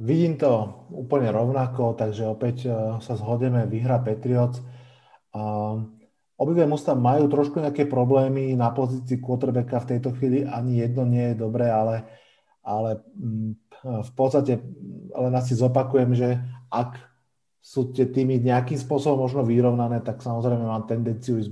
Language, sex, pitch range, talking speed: Slovak, male, 110-130 Hz, 135 wpm